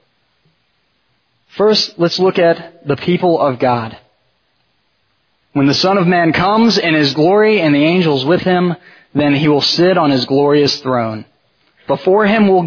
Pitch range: 135-175 Hz